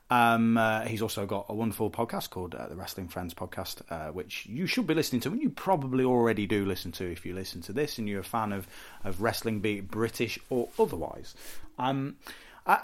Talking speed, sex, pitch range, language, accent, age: 220 wpm, male, 95-120 Hz, English, British, 30-49